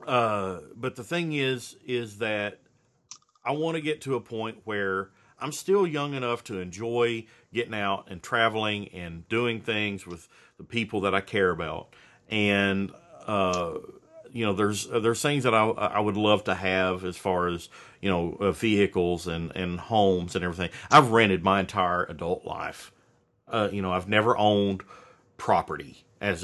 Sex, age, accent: male, 40-59, American